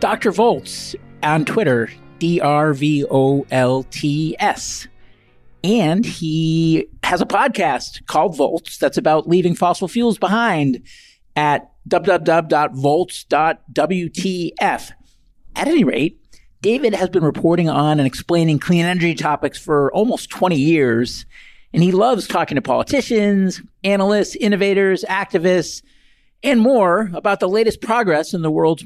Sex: male